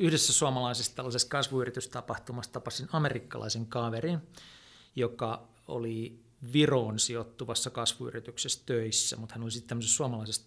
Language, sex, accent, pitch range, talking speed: Finnish, male, native, 120-165 Hz, 105 wpm